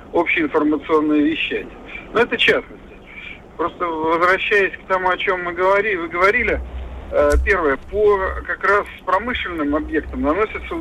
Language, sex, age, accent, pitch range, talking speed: Russian, male, 50-69, native, 150-200 Hz, 120 wpm